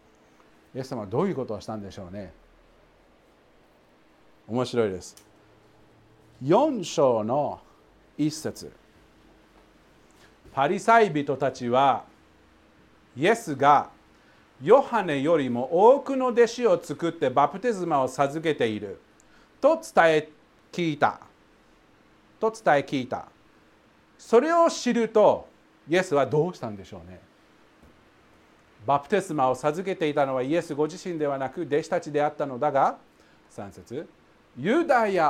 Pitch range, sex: 140-200 Hz, male